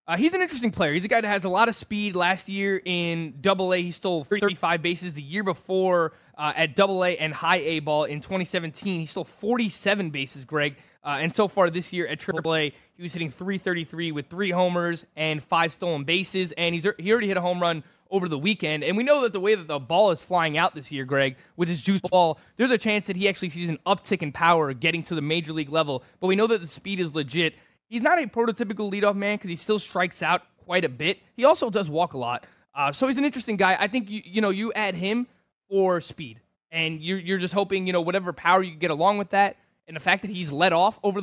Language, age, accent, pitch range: English, 20-39, American, 160-200 Hz